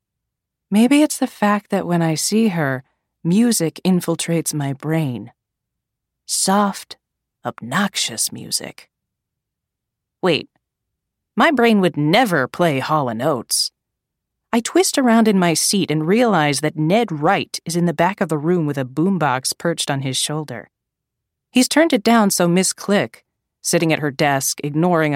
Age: 30-49